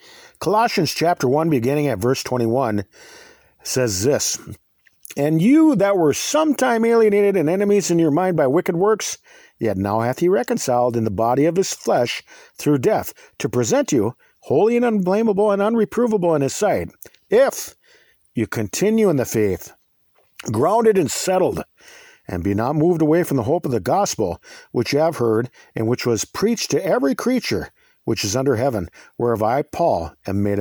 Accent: American